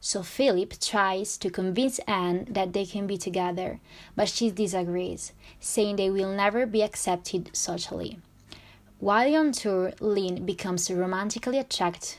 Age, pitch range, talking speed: 20-39, 180-205 Hz, 140 wpm